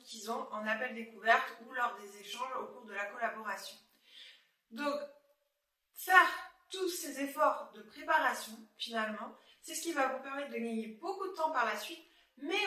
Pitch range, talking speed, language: 230-305 Hz, 175 wpm, French